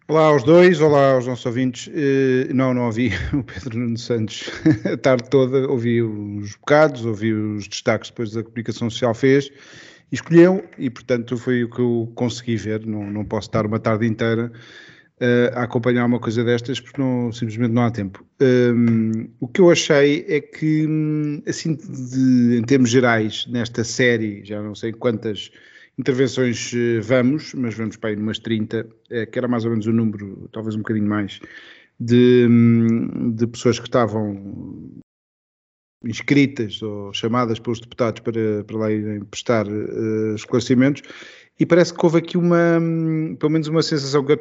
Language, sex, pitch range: Portuguese, male, 115-140 Hz